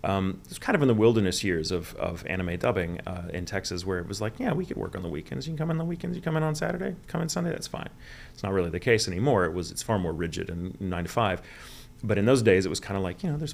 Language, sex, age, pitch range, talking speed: English, male, 30-49, 85-100 Hz, 310 wpm